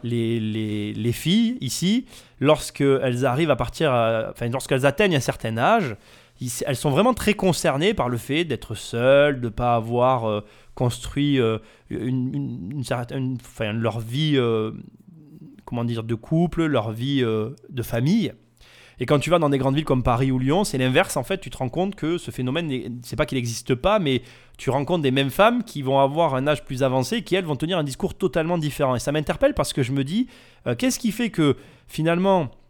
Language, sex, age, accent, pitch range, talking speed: French, male, 20-39, French, 120-155 Hz, 210 wpm